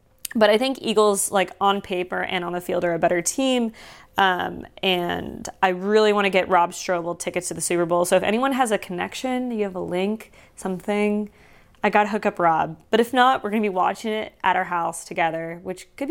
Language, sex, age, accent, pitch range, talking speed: English, female, 20-39, American, 175-215 Hz, 225 wpm